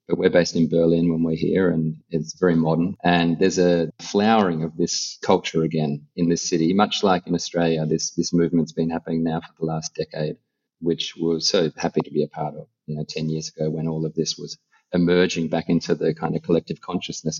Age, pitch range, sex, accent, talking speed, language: 30-49, 80-85 Hz, male, Australian, 220 wpm, Italian